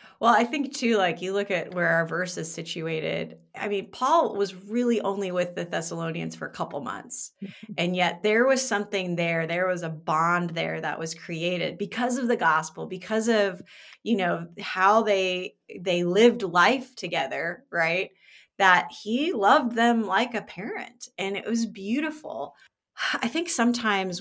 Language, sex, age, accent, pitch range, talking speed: English, female, 30-49, American, 170-210 Hz, 170 wpm